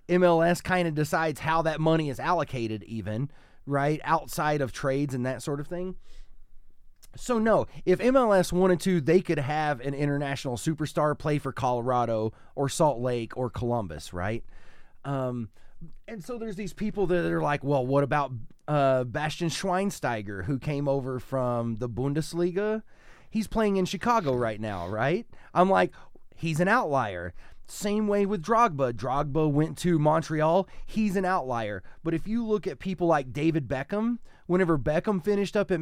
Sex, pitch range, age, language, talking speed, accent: male, 130-185 Hz, 30-49, English, 165 wpm, American